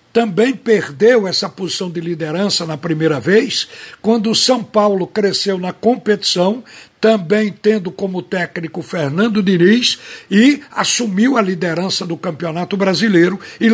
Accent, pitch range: Brazilian, 175-215 Hz